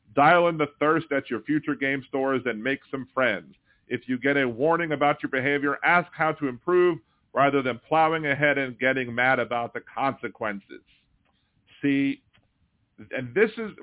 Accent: American